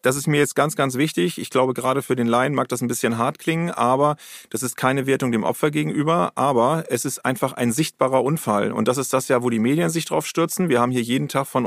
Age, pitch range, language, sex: 40-59, 125-160 Hz, German, male